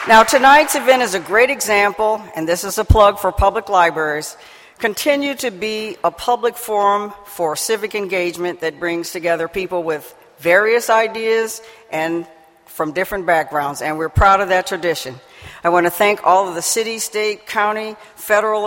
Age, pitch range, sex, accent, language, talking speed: 60-79, 180-240 Hz, female, American, English, 165 wpm